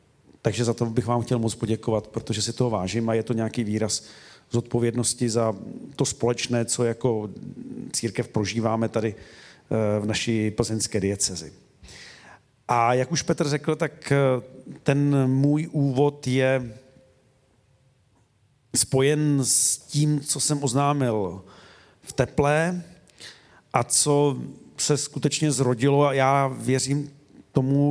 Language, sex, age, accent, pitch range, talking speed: Czech, male, 40-59, native, 115-140 Hz, 125 wpm